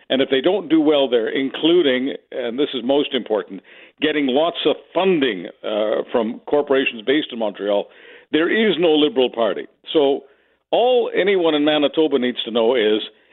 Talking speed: 165 wpm